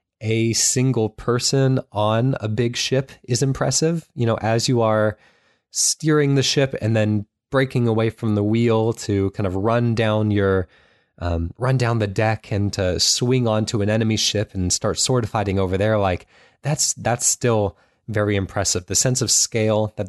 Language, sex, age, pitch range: English, male, 20-39, 100-120 Hz